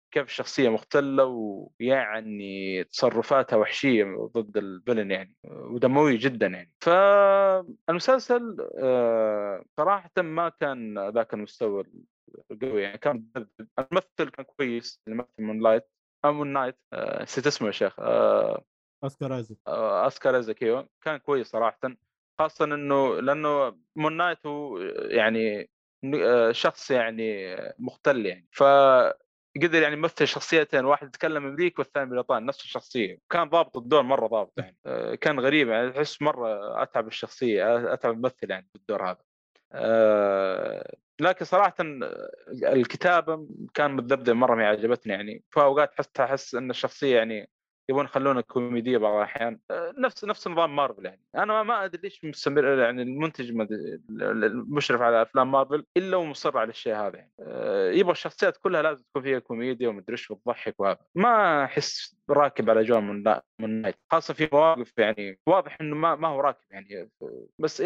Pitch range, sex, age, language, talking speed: 115-165 Hz, male, 20-39, Arabic, 145 wpm